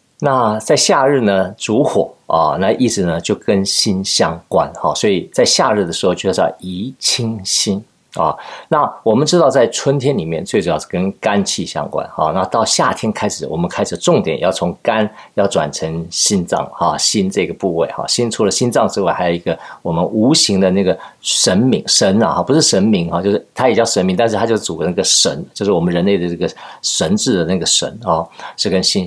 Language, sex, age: Chinese, male, 50-69